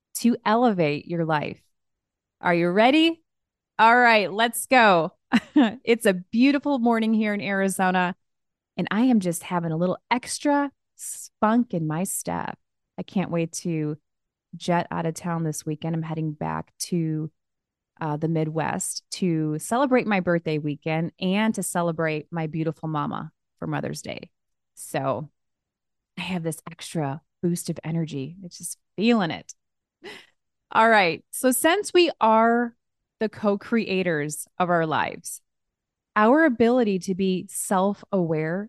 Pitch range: 165-225 Hz